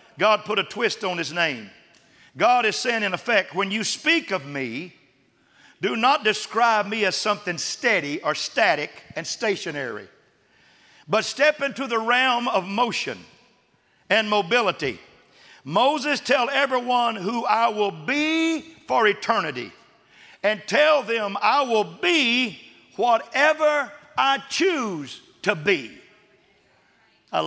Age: 50-69